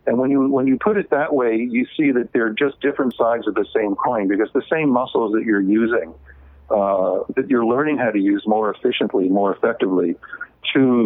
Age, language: 50-69, English